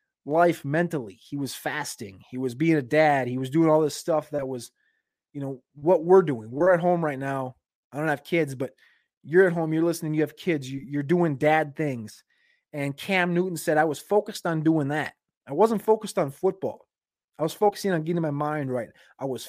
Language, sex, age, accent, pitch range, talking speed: English, male, 20-39, American, 140-175 Hz, 215 wpm